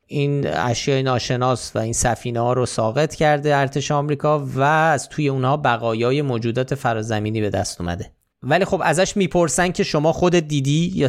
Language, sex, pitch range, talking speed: Persian, male, 120-165 Hz, 170 wpm